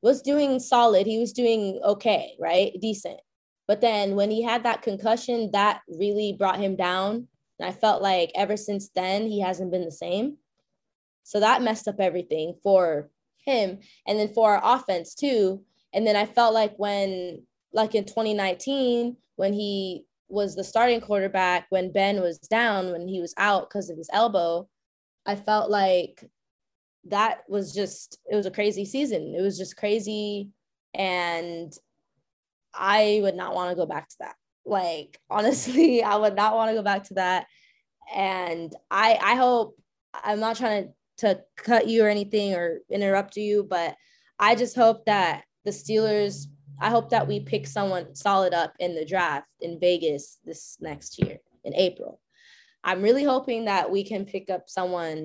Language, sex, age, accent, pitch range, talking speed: English, female, 10-29, American, 185-220 Hz, 175 wpm